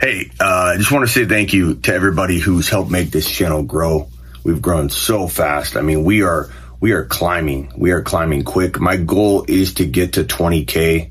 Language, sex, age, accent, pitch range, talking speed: English, male, 30-49, American, 70-95 Hz, 210 wpm